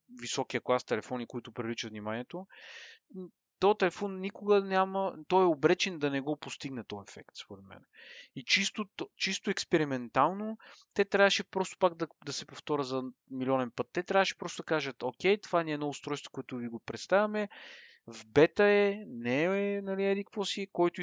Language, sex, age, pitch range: Bulgarian, male, 30-49, 125-185 Hz